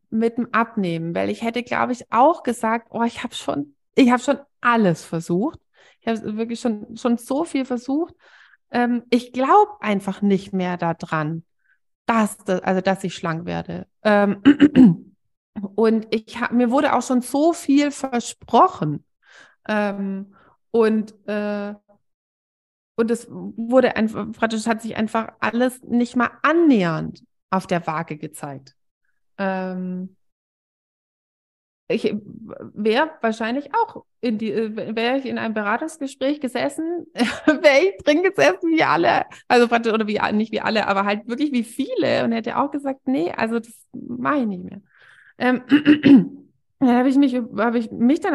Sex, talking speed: female, 135 wpm